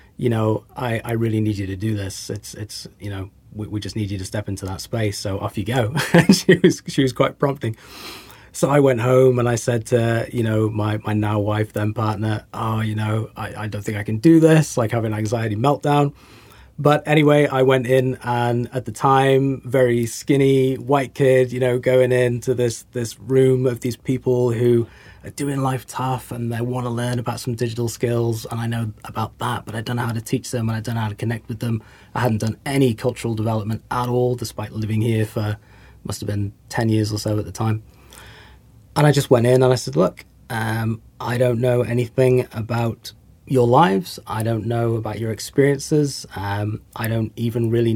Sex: male